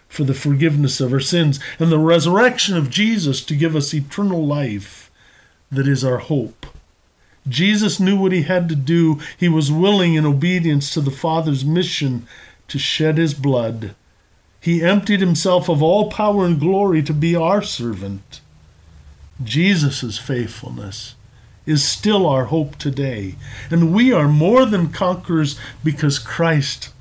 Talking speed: 150 wpm